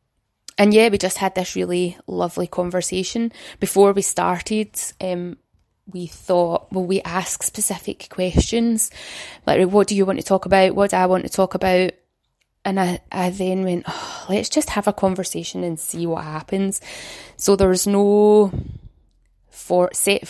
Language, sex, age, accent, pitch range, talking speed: English, female, 20-39, British, 170-200 Hz, 160 wpm